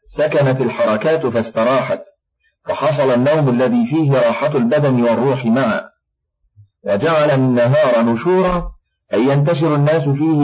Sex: male